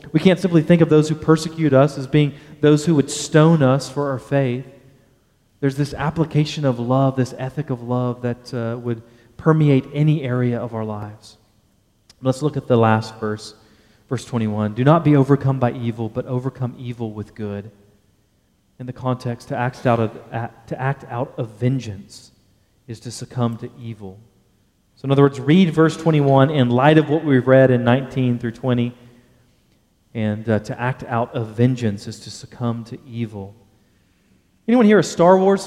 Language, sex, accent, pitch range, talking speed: English, male, American, 120-155 Hz, 175 wpm